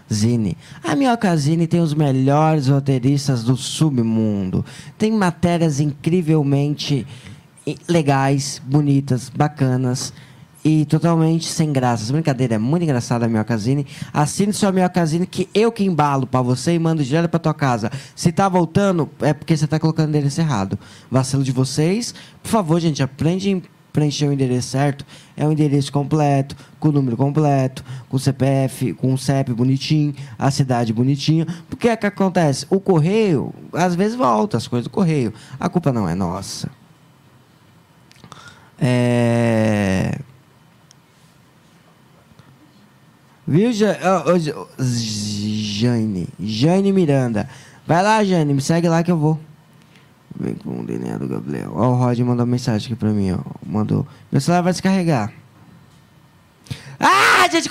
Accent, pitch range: Brazilian, 130-180 Hz